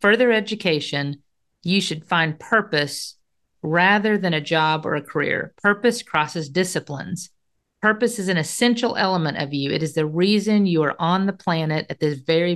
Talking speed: 165 wpm